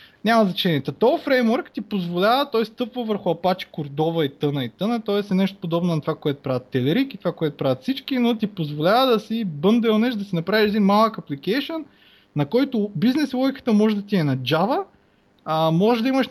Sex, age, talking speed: male, 20-39, 200 wpm